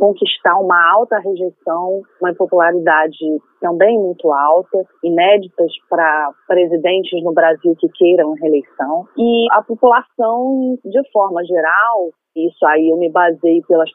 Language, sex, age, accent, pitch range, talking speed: Portuguese, female, 30-49, Brazilian, 170-240 Hz, 125 wpm